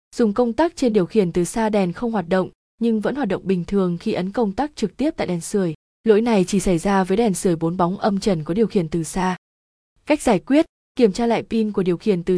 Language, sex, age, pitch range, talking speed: Vietnamese, female, 20-39, 190-235 Hz, 265 wpm